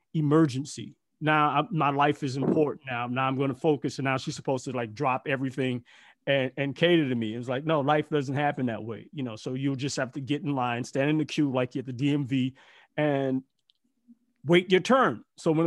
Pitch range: 140-220 Hz